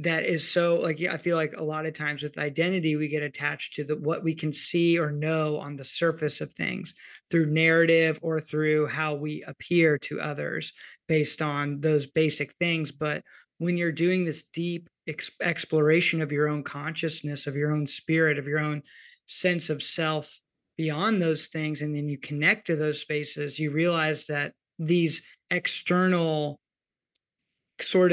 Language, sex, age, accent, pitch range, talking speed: English, male, 20-39, American, 150-170 Hz, 175 wpm